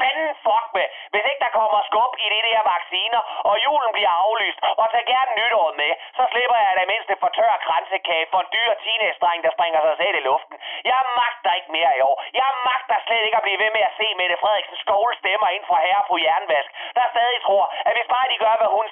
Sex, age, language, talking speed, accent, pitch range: male, 30-49, Danish, 240 wpm, native, 200-260 Hz